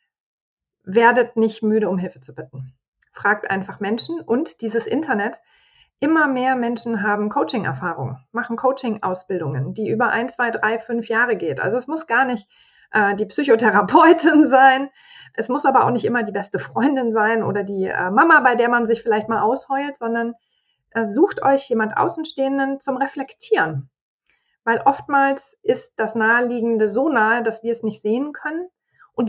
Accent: German